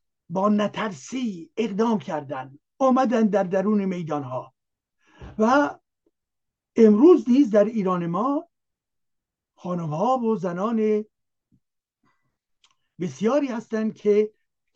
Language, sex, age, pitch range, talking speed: Persian, male, 60-79, 165-225 Hz, 80 wpm